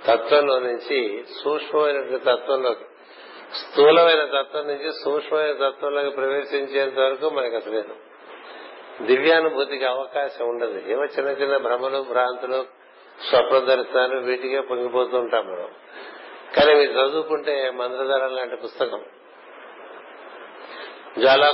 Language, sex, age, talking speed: Telugu, male, 60-79, 95 wpm